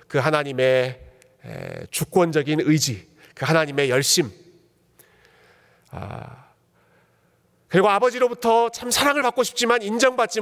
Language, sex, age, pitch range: Korean, male, 40-59, 130-195 Hz